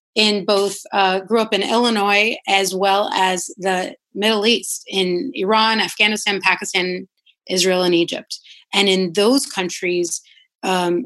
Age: 30-49